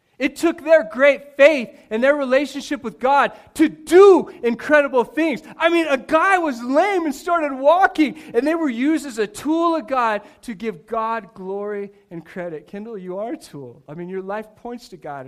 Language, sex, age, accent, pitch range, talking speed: English, male, 40-59, American, 185-265 Hz, 195 wpm